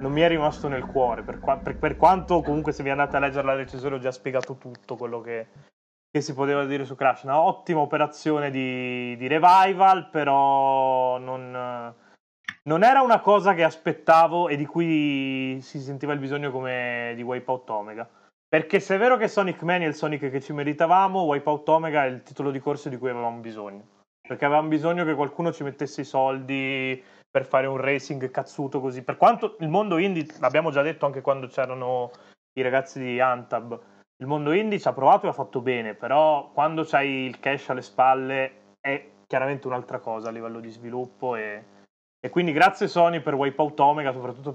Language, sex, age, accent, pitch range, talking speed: Italian, male, 20-39, native, 125-150 Hz, 195 wpm